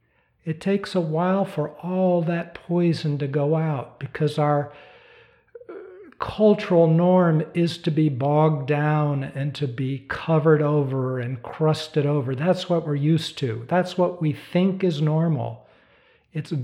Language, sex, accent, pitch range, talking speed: English, male, American, 145-190 Hz, 145 wpm